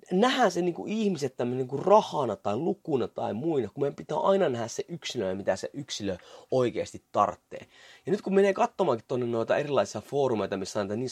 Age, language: 30-49, Finnish